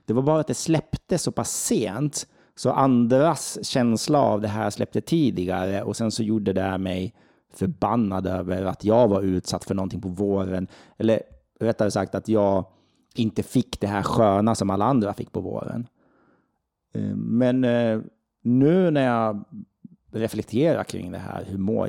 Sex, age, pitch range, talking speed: male, 30-49, 95-120 Hz, 160 wpm